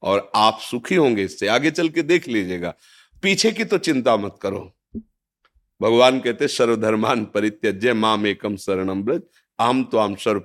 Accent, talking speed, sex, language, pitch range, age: native, 160 wpm, male, Hindi, 105-145 Hz, 50-69